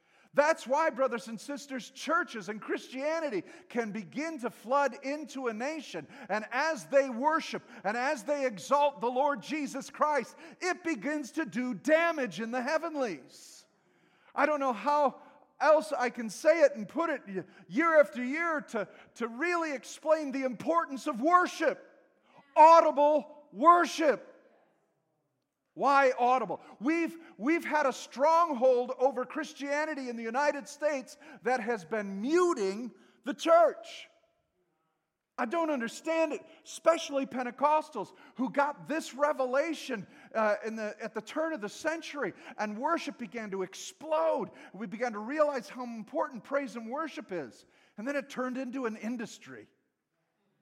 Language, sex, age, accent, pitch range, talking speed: English, male, 50-69, American, 235-310 Hz, 140 wpm